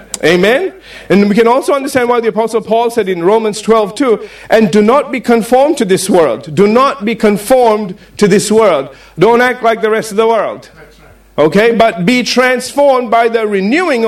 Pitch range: 195-235 Hz